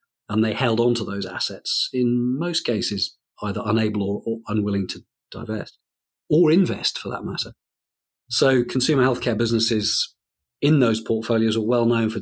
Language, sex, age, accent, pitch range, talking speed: English, male, 40-59, British, 105-120 Hz, 160 wpm